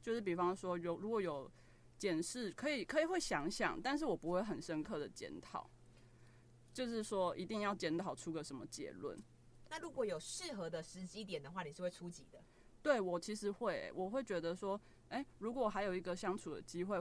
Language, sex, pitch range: Chinese, female, 160-205 Hz